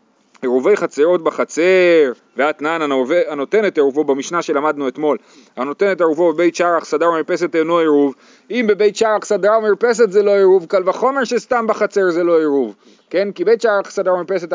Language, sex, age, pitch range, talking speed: Hebrew, male, 30-49, 150-215 Hz, 170 wpm